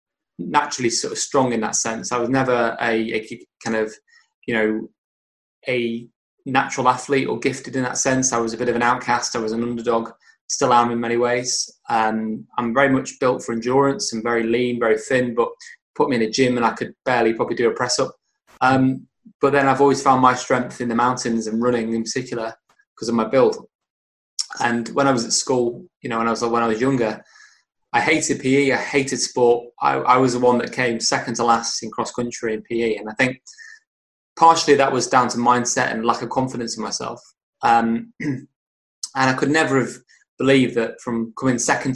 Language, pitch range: English, 115-130 Hz